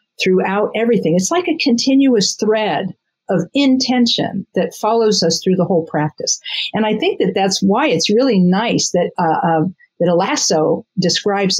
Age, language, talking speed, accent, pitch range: 50-69, English, 165 wpm, American, 185-235 Hz